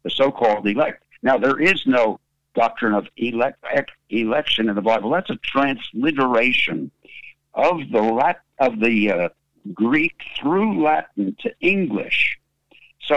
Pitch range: 105-145 Hz